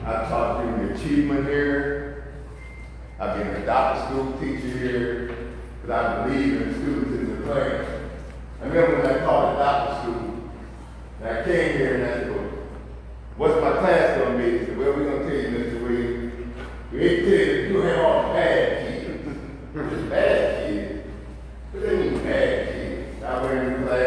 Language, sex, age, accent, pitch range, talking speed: English, male, 50-69, American, 100-160 Hz, 175 wpm